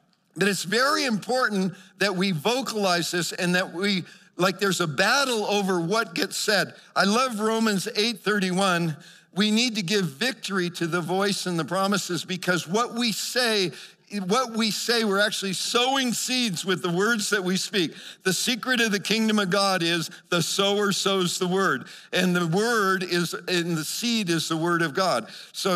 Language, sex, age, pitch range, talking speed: English, male, 50-69, 170-210 Hz, 185 wpm